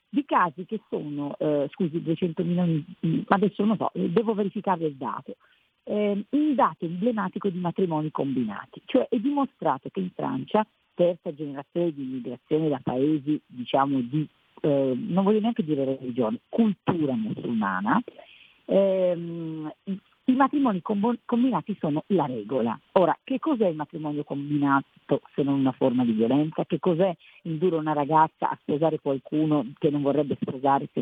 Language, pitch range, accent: Italian, 145-200 Hz, native